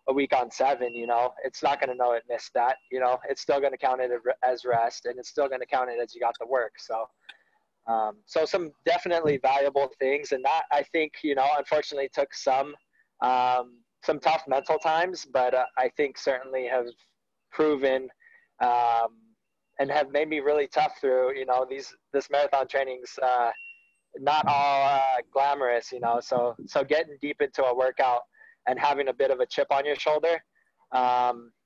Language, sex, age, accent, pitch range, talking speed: English, male, 20-39, American, 125-145 Hz, 190 wpm